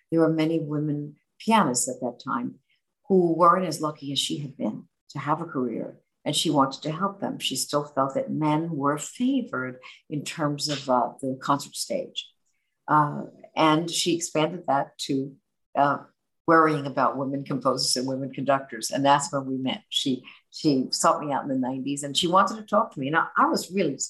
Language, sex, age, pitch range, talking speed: English, female, 60-79, 135-170 Hz, 195 wpm